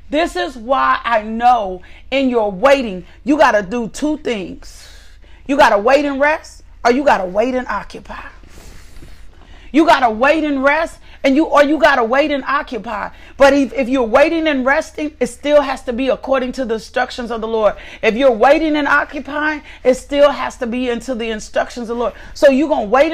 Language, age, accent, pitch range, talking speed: English, 40-59, American, 235-295 Hz, 215 wpm